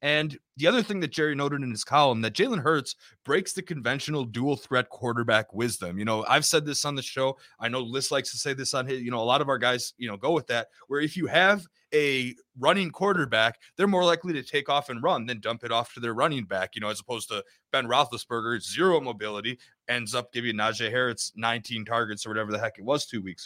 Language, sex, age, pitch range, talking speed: English, male, 30-49, 115-155 Hz, 245 wpm